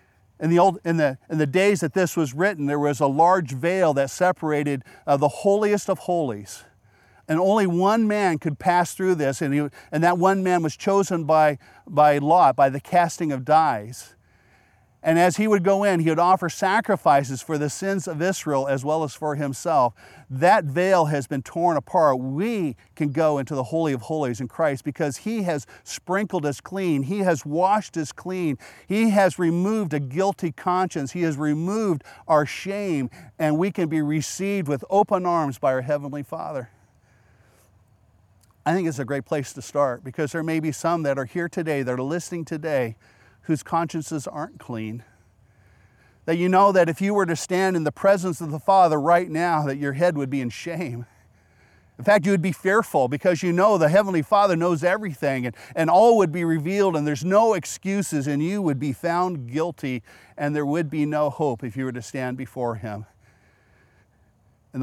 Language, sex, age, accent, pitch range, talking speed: English, male, 50-69, American, 135-180 Hz, 195 wpm